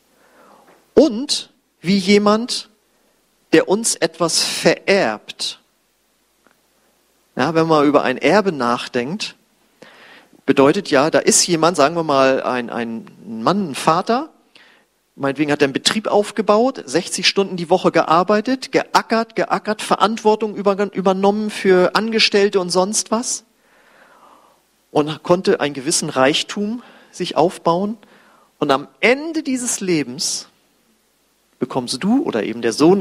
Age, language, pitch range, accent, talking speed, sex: 40-59, German, 155-225 Hz, German, 115 wpm, male